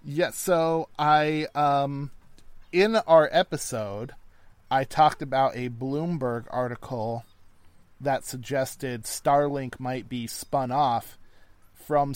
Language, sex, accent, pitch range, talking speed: English, male, American, 110-140 Hz, 105 wpm